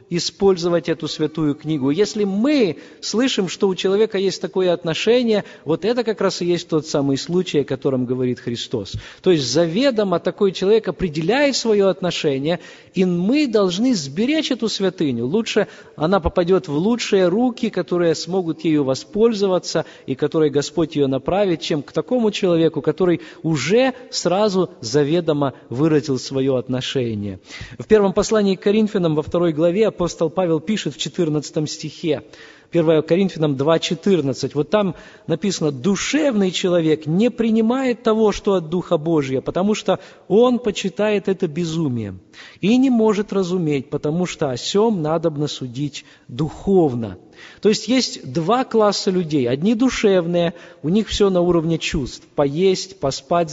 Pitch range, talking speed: 155-210 Hz, 145 wpm